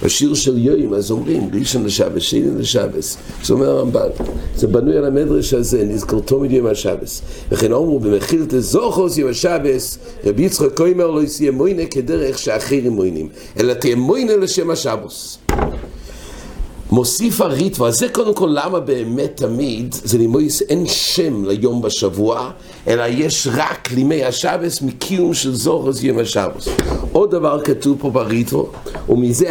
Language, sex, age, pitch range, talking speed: English, male, 50-69, 105-155 Hz, 145 wpm